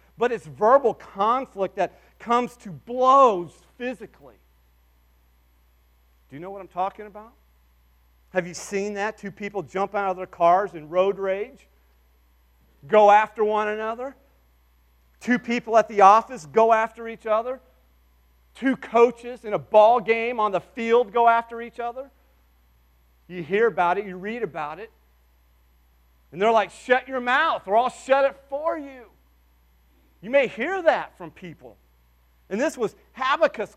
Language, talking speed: English, 155 wpm